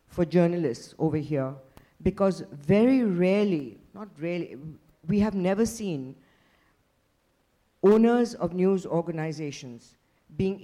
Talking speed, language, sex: 100 wpm, English, female